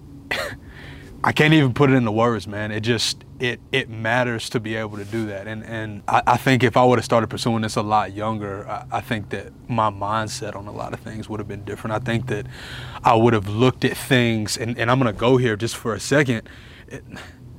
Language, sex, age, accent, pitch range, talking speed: English, male, 20-39, American, 110-130 Hz, 230 wpm